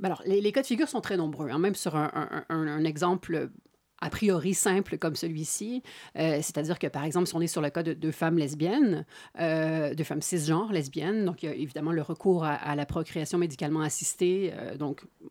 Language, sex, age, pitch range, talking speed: French, female, 30-49, 160-185 Hz, 225 wpm